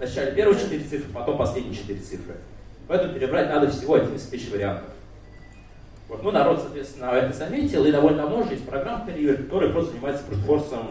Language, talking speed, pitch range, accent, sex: Russian, 165 wpm, 105-150 Hz, native, male